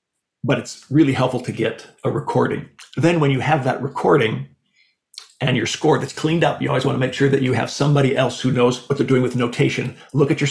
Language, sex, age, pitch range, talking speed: English, male, 40-59, 125-145 Hz, 235 wpm